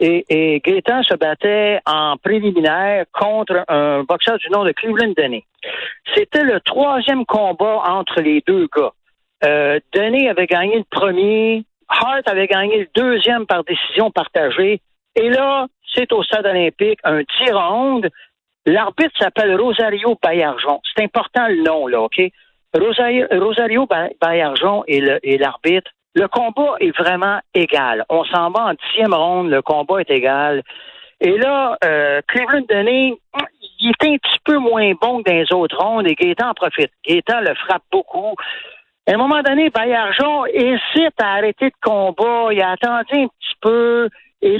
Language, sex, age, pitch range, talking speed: French, male, 60-79, 175-255 Hz, 160 wpm